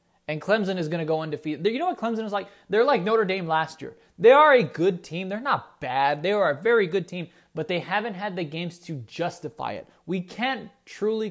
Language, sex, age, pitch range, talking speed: English, male, 20-39, 140-190 Hz, 240 wpm